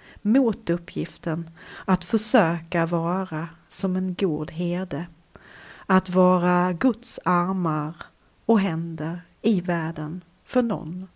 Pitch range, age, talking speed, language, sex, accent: 170-200 Hz, 40-59, 100 wpm, Swedish, female, native